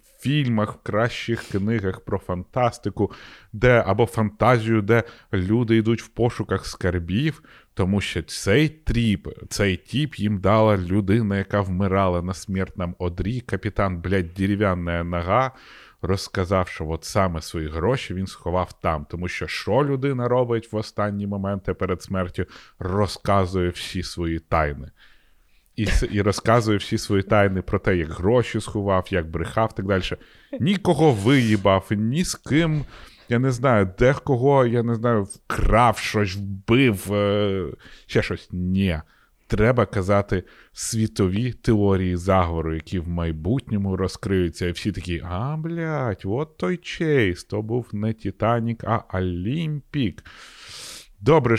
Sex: male